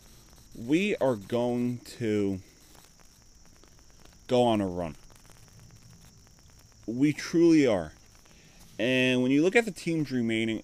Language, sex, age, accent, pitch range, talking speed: English, male, 30-49, American, 95-130 Hz, 105 wpm